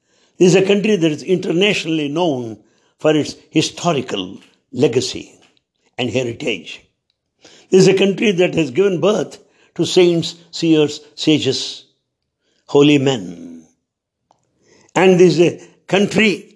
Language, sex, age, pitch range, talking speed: English, male, 60-79, 135-180 Hz, 120 wpm